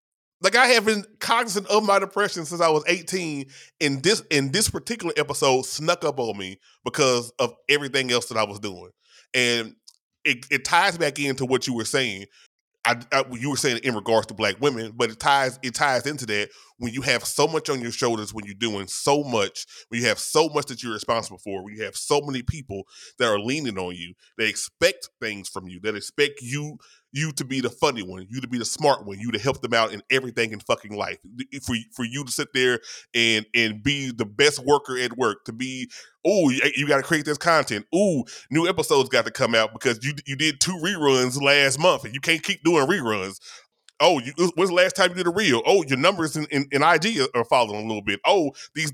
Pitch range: 115-150 Hz